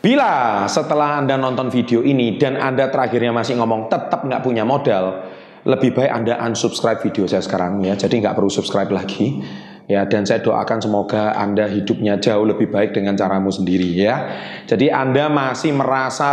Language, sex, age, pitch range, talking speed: Indonesian, male, 30-49, 105-140 Hz, 170 wpm